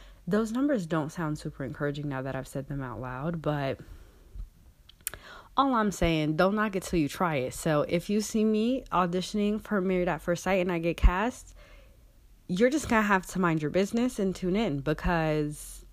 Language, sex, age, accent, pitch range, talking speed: English, female, 20-39, American, 145-185 Hz, 195 wpm